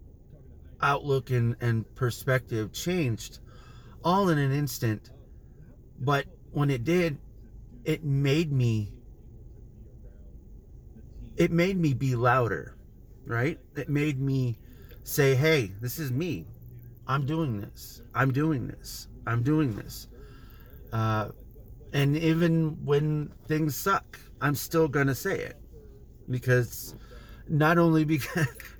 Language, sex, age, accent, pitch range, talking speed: English, male, 30-49, American, 110-145 Hz, 115 wpm